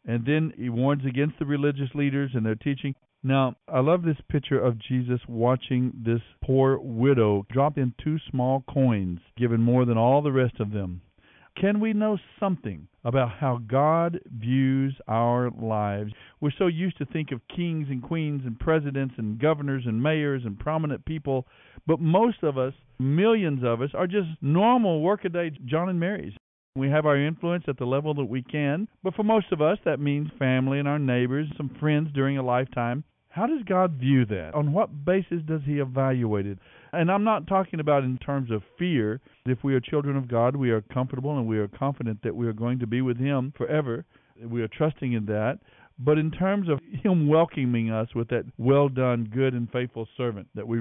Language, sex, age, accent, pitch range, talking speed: English, male, 50-69, American, 120-155 Hz, 195 wpm